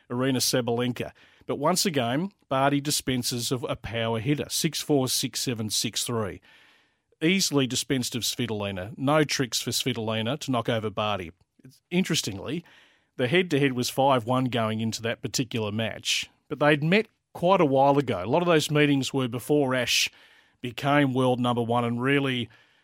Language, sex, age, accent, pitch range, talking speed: English, male, 40-59, Australian, 125-155 Hz, 160 wpm